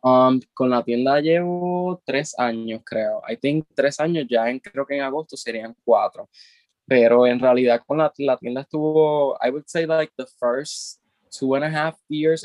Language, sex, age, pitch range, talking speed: Spanish, male, 10-29, 115-140 Hz, 90 wpm